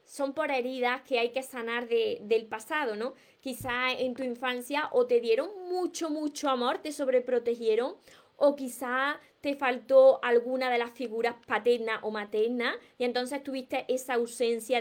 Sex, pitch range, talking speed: female, 240-285 Hz, 160 wpm